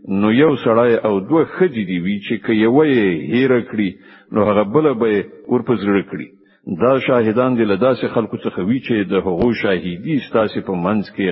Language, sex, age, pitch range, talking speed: English, male, 60-79, 105-140 Hz, 170 wpm